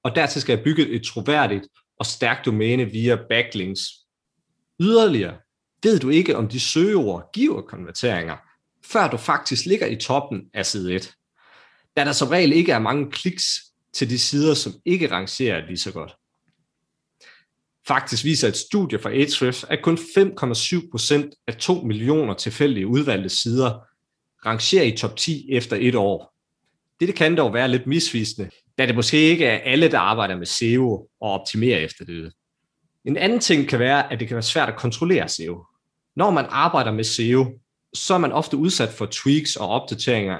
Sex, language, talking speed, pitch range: male, Danish, 170 wpm, 110-145 Hz